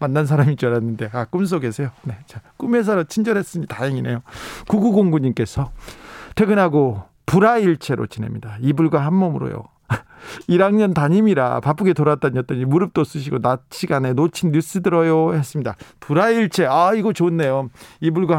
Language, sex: Korean, male